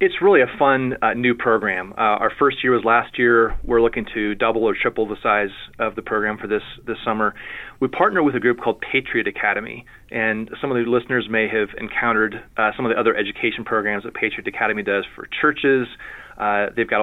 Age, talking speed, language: 30-49, 215 wpm, English